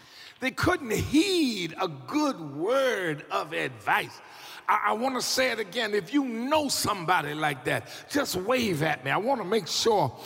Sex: male